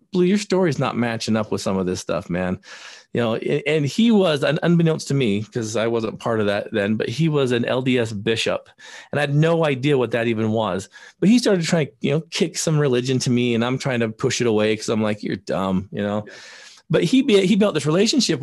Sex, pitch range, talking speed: male, 110-160 Hz, 245 wpm